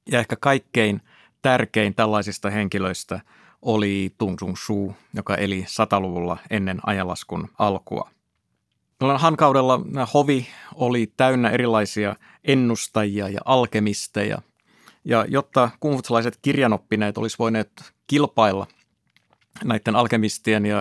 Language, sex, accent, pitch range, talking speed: Finnish, male, native, 105-125 Hz, 100 wpm